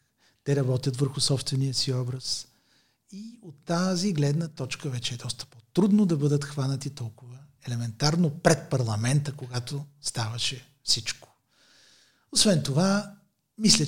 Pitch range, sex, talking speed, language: 130-185 Hz, male, 120 wpm, Bulgarian